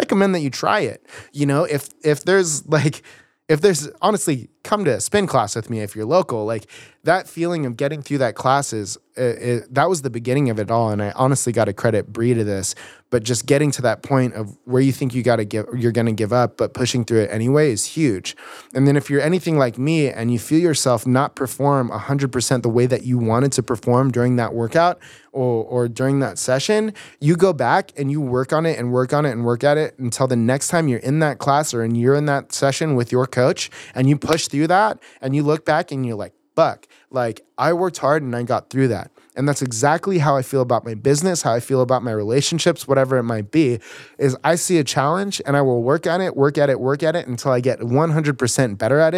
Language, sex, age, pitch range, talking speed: English, male, 20-39, 120-150 Hz, 250 wpm